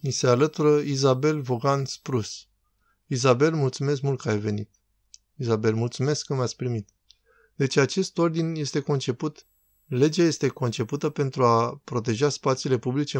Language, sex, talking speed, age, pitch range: Romanian, male, 140 wpm, 20-39, 120-145 Hz